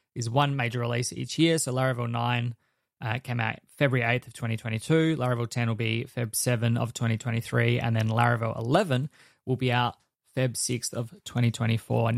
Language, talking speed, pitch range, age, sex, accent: English, 175 wpm, 115-130 Hz, 20-39, male, Australian